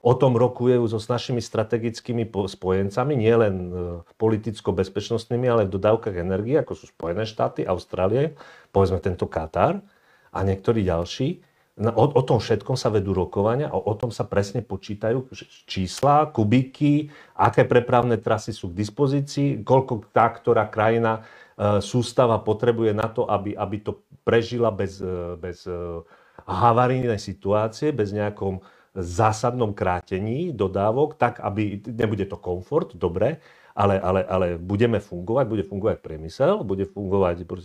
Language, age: Slovak, 40-59